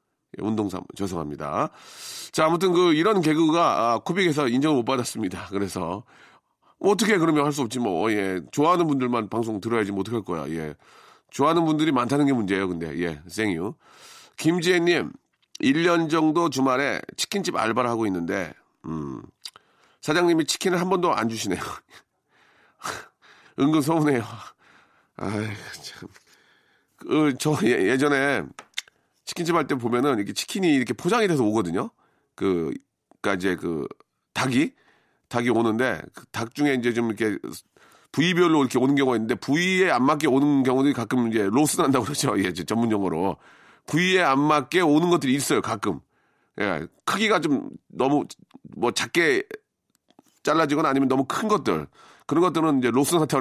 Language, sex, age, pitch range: Korean, male, 40-59, 115-165 Hz